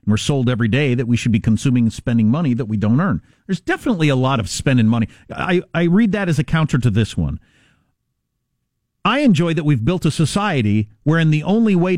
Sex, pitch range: male, 130-205 Hz